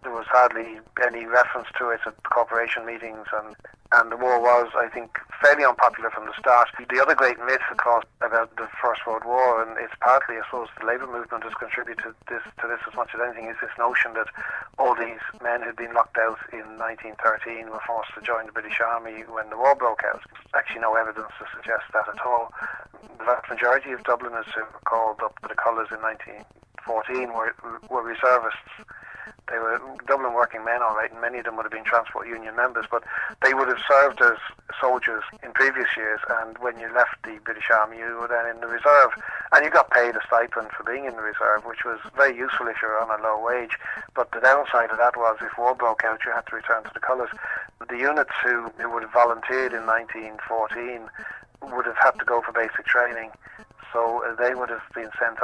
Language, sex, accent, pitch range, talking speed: English, male, Irish, 115-125 Hz, 220 wpm